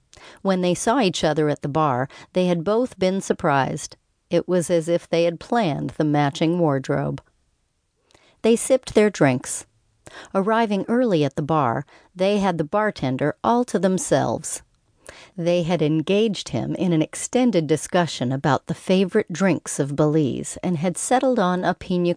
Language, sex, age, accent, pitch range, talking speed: English, female, 40-59, American, 145-195 Hz, 160 wpm